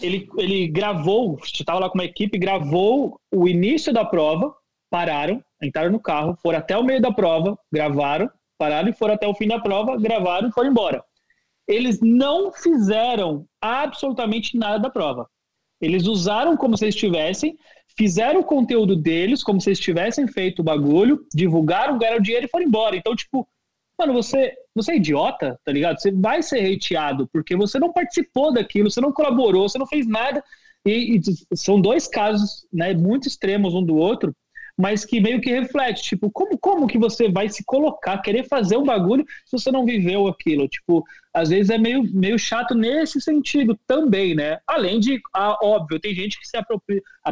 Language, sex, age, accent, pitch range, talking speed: Portuguese, male, 20-39, Brazilian, 185-255 Hz, 180 wpm